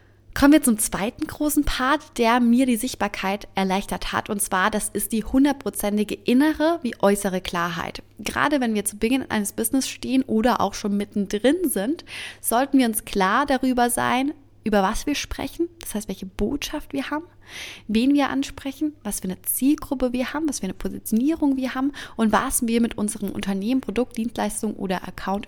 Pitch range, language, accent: 200-260 Hz, German, German